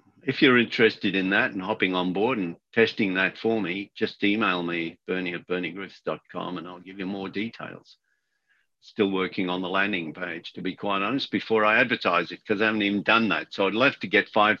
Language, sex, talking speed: English, male, 215 wpm